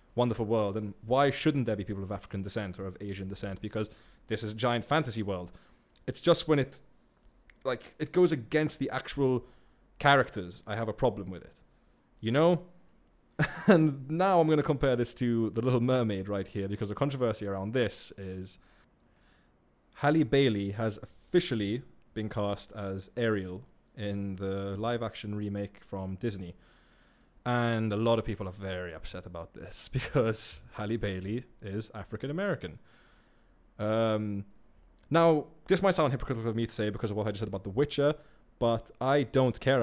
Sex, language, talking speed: male, English, 165 wpm